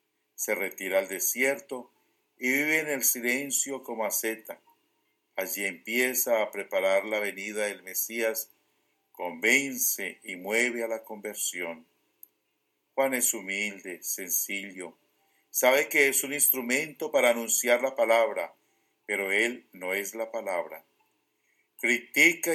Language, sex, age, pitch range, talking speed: English, male, 50-69, 110-130 Hz, 120 wpm